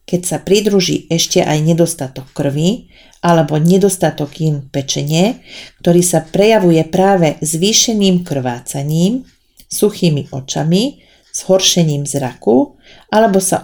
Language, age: Slovak, 40-59